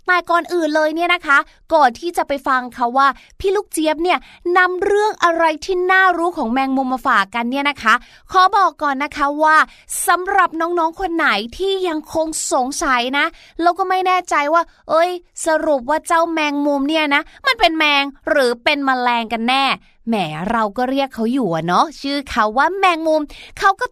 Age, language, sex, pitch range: 20-39, Thai, female, 275-350 Hz